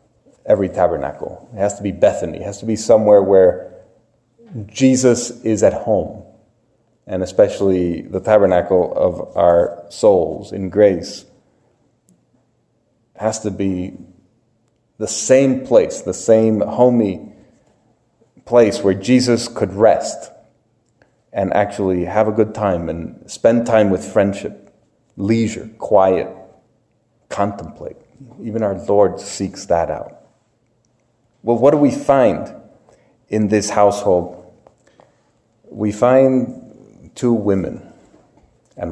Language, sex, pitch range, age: English, male, 95-120 Hz, 30-49